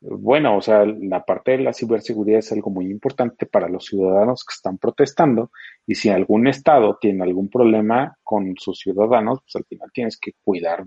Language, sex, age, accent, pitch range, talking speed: Spanish, male, 30-49, Mexican, 110-140 Hz, 190 wpm